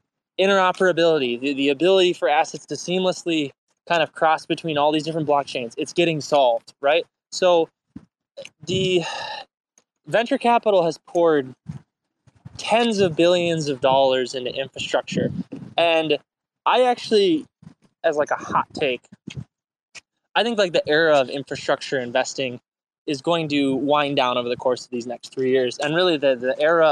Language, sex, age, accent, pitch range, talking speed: English, male, 20-39, American, 135-175 Hz, 150 wpm